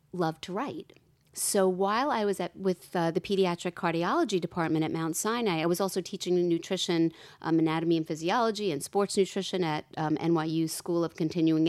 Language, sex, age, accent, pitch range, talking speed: English, female, 40-59, American, 165-200 Hz, 180 wpm